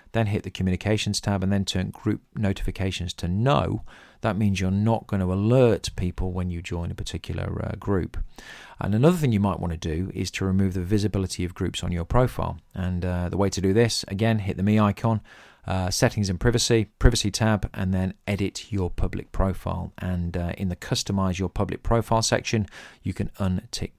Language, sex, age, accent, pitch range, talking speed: English, male, 40-59, British, 90-110 Hz, 205 wpm